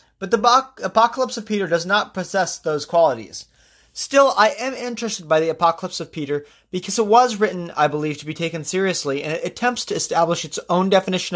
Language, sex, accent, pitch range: English, male, American, 155-225 Hz